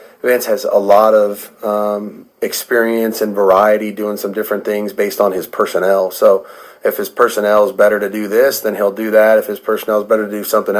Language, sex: English, male